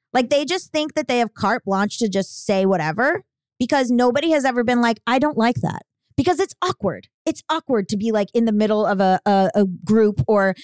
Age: 20-39